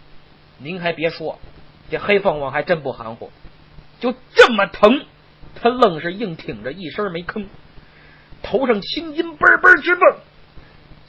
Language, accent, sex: Chinese, native, male